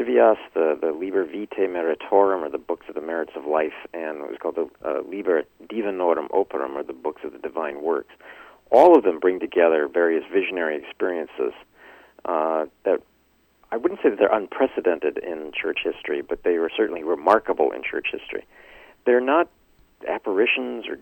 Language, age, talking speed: English, 40-59, 170 wpm